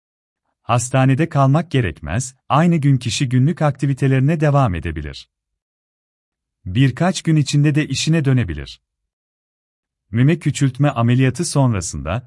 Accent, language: native, Turkish